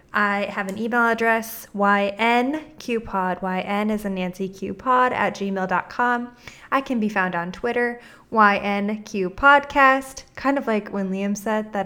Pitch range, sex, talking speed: 190-240 Hz, female, 140 wpm